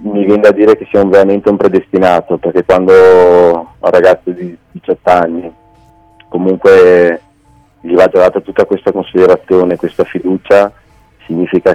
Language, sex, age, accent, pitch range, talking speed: Italian, male, 30-49, native, 85-95 Hz, 145 wpm